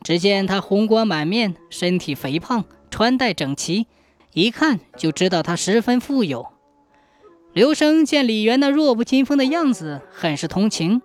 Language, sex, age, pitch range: Chinese, female, 20-39, 185-270 Hz